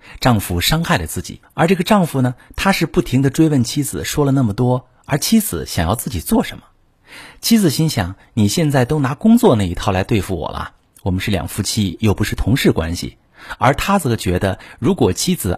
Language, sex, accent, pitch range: Chinese, male, native, 95-130 Hz